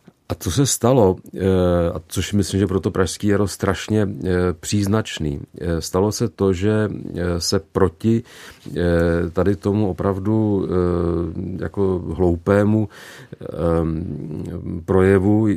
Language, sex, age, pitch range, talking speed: Czech, male, 40-59, 90-105 Hz, 95 wpm